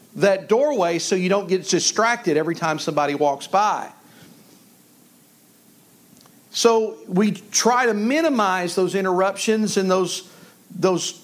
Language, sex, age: English, male, 50-69